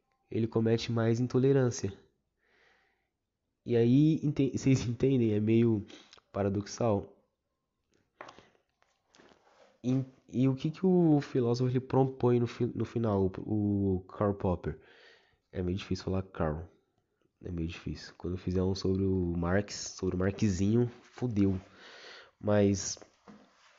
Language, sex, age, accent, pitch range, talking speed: Portuguese, male, 20-39, Brazilian, 105-130 Hz, 115 wpm